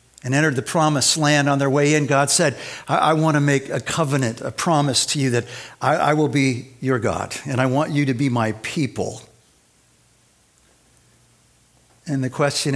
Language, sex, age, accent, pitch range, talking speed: English, male, 60-79, American, 125-160 Hz, 190 wpm